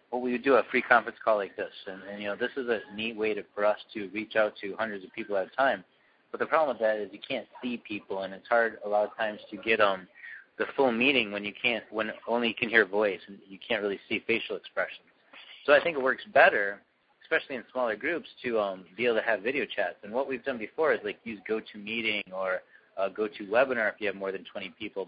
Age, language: 30-49, English